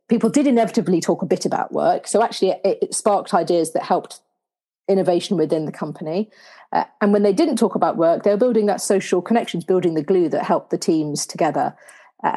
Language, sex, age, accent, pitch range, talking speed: English, female, 40-59, British, 160-205 Hz, 210 wpm